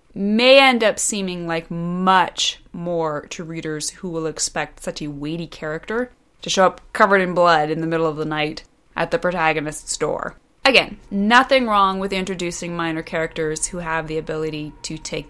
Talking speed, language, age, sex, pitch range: 175 wpm, English, 30-49, female, 160-205 Hz